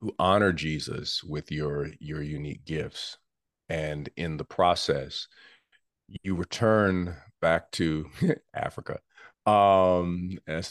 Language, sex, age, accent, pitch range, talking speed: English, male, 40-59, American, 75-90 Hz, 105 wpm